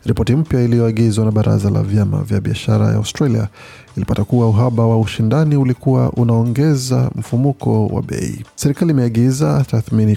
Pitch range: 110-130 Hz